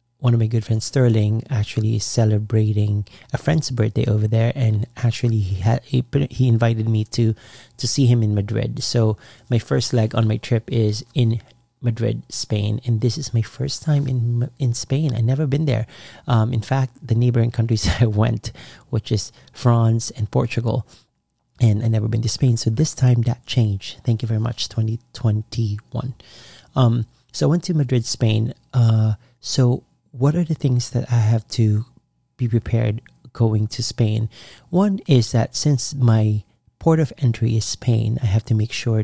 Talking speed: 180 wpm